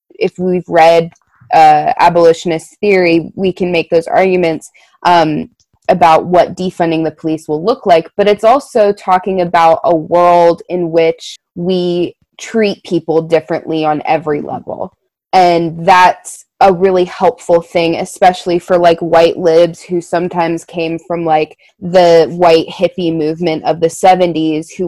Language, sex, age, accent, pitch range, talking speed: English, female, 20-39, American, 165-195 Hz, 145 wpm